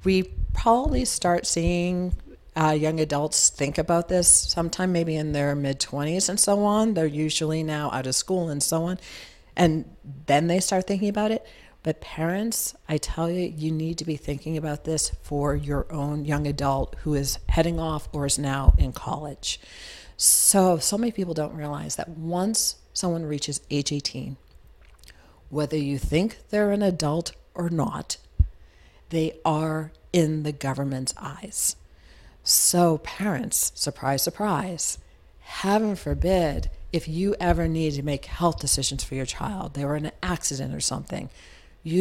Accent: American